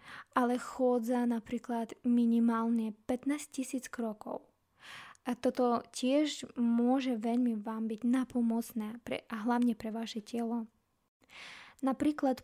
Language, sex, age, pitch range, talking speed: Slovak, female, 20-39, 230-260 Hz, 105 wpm